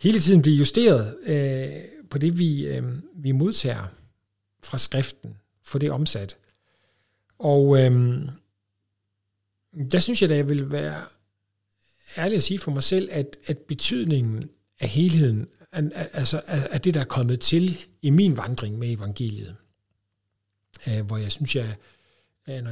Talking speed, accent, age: 145 wpm, native, 60-79